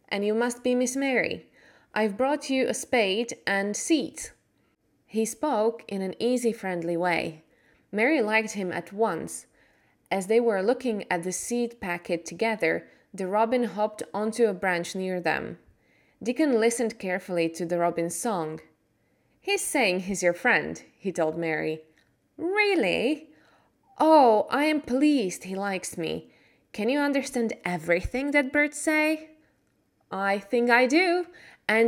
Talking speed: 145 wpm